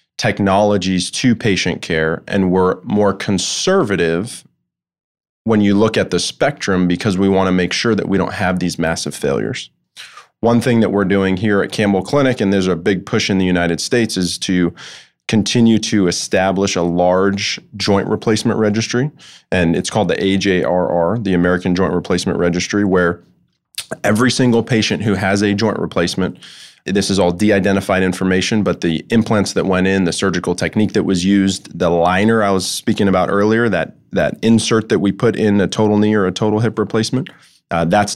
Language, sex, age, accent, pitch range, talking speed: English, male, 20-39, American, 90-110 Hz, 180 wpm